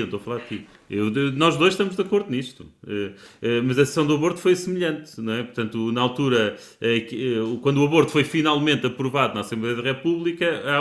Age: 30-49